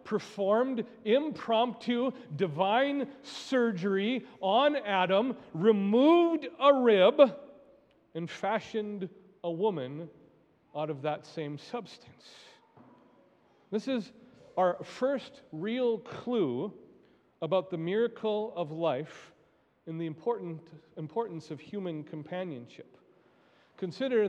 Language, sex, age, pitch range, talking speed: English, male, 40-59, 165-240 Hz, 90 wpm